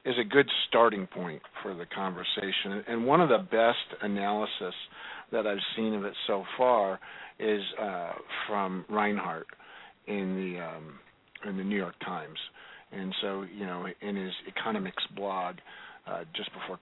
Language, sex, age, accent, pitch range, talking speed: English, male, 50-69, American, 100-115 Hz, 155 wpm